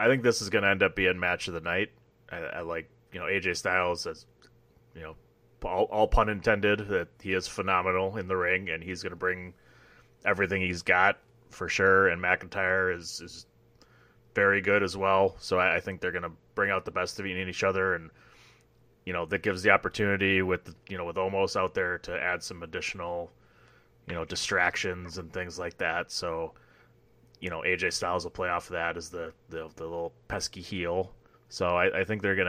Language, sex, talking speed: English, male, 210 wpm